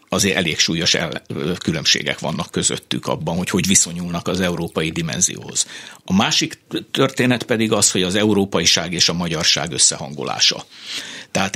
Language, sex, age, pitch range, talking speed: Hungarian, male, 60-79, 90-105 Hz, 140 wpm